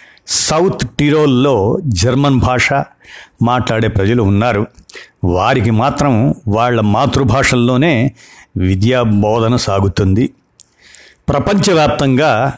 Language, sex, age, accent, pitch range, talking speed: Telugu, male, 60-79, native, 110-140 Hz, 70 wpm